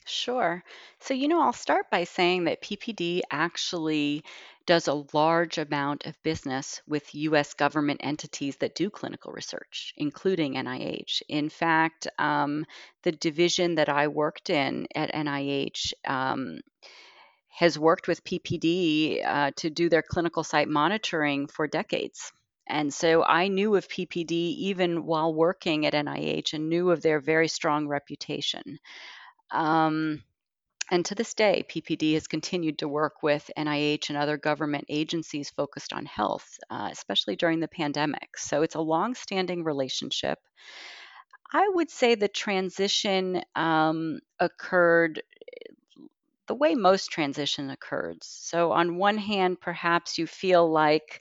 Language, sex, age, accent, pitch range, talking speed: English, female, 40-59, American, 150-185 Hz, 140 wpm